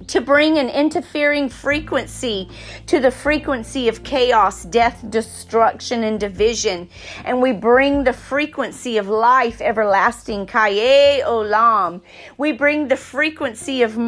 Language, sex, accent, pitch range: English, female, American, 235-295 Hz